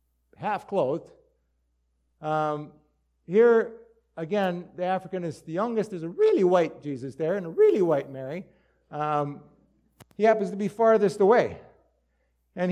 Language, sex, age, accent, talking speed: English, male, 50-69, American, 130 wpm